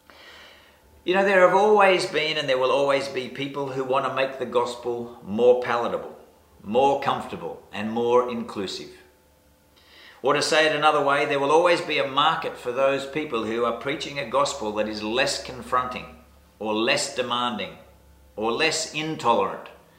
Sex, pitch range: male, 105-160 Hz